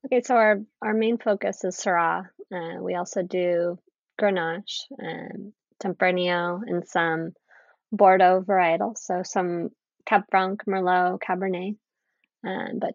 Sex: female